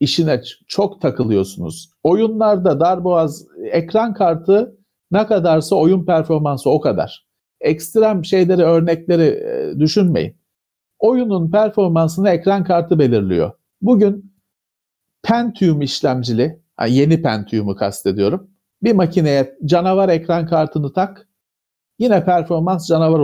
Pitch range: 150-200 Hz